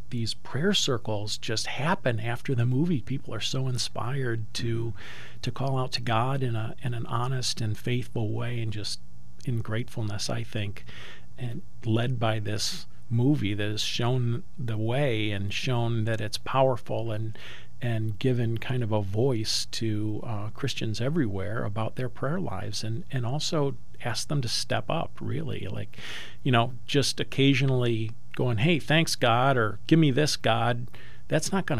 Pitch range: 110-130 Hz